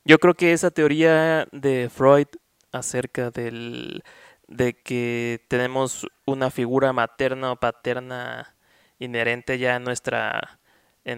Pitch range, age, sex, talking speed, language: 120-135 Hz, 20-39, male, 120 wpm, Spanish